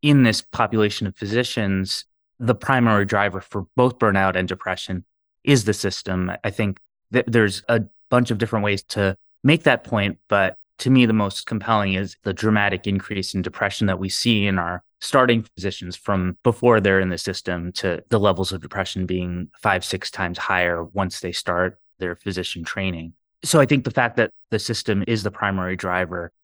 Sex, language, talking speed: male, English, 185 wpm